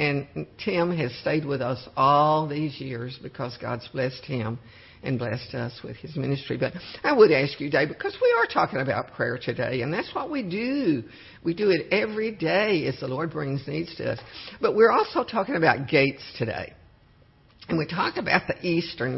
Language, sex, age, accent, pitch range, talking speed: English, female, 60-79, American, 125-165 Hz, 195 wpm